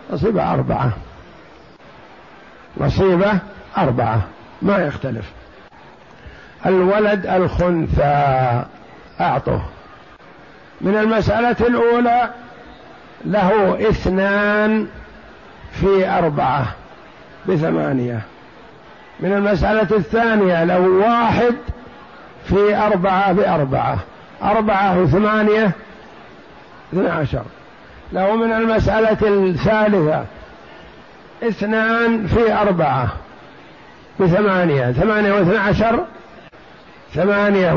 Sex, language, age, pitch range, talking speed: male, Arabic, 50-69, 180-215 Hz, 65 wpm